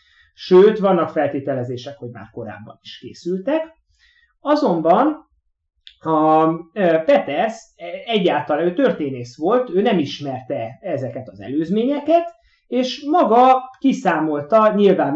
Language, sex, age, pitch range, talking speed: Hungarian, male, 30-49, 135-215 Hz, 90 wpm